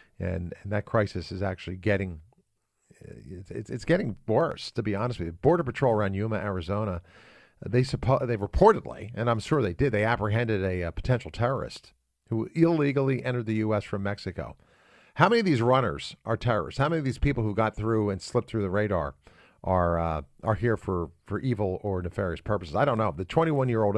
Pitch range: 90-115 Hz